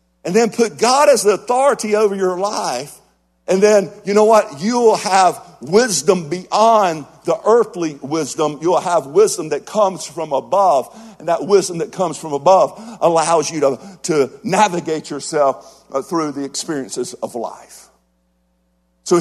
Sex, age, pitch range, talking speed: male, 50-69, 140-205 Hz, 155 wpm